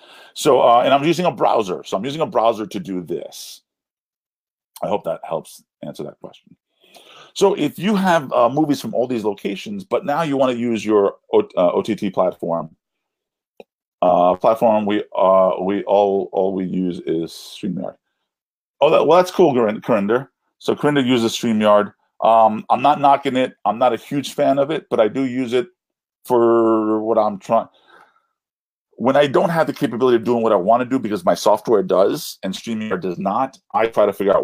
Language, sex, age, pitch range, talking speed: English, male, 40-59, 105-140 Hz, 195 wpm